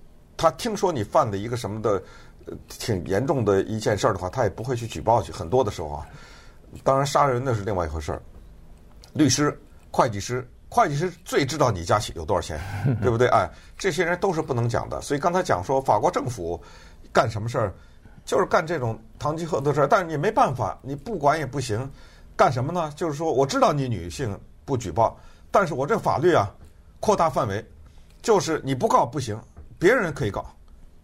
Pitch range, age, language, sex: 90-145 Hz, 50-69, Chinese, male